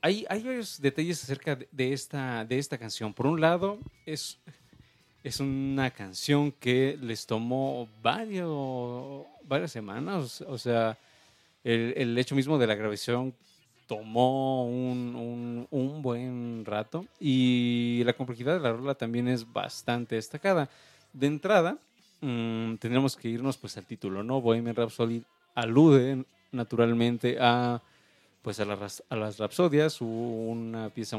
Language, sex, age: Spanish, male, 30-49